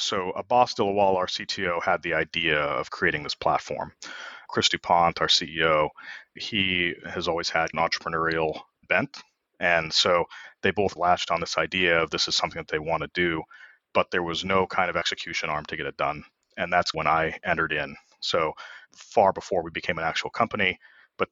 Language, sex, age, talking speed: English, male, 30-49, 190 wpm